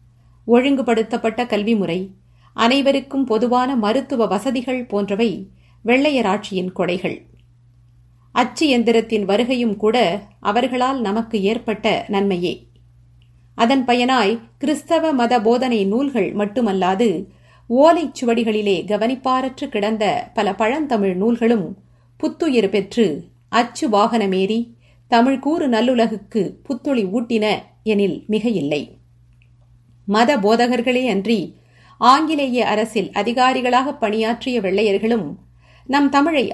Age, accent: 50-69, native